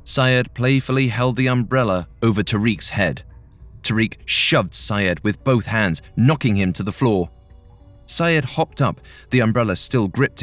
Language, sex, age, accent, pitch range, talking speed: English, male, 30-49, British, 95-130 Hz, 150 wpm